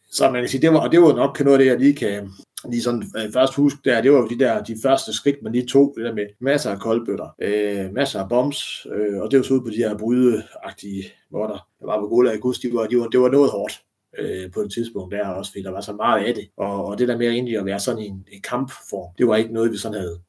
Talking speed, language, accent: 270 wpm, Danish, native